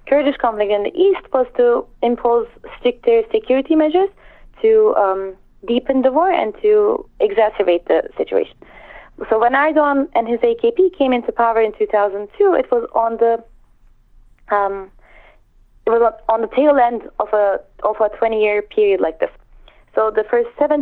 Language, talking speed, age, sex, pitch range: English, 160 wpm, 20-39, female, 210-310 Hz